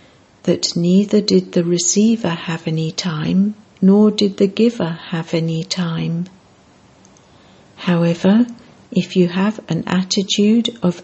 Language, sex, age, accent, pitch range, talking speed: English, female, 60-79, British, 175-210 Hz, 120 wpm